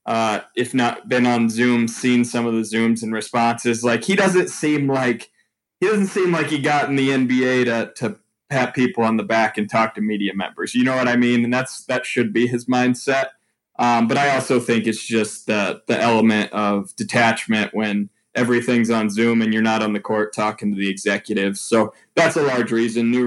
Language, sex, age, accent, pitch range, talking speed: English, male, 20-39, American, 115-135 Hz, 215 wpm